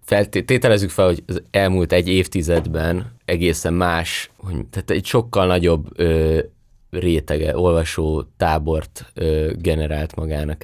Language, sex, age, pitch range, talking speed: Hungarian, male, 20-39, 80-90 Hz, 115 wpm